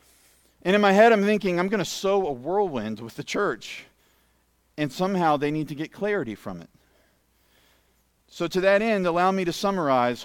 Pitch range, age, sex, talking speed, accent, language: 110-150 Hz, 40-59, male, 185 wpm, American, English